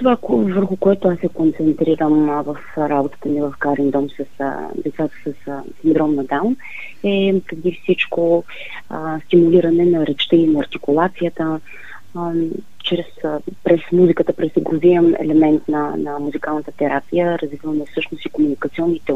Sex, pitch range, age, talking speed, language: female, 145-170 Hz, 30-49, 140 wpm, Bulgarian